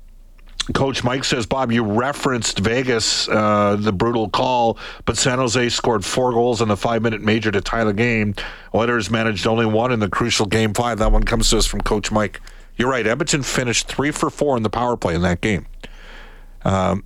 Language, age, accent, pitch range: English, 50-69, American, 95-115 Hz